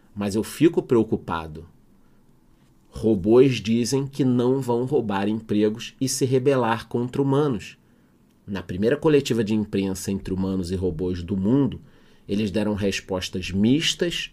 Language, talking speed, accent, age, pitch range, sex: Portuguese, 130 wpm, Brazilian, 30-49, 100-135 Hz, male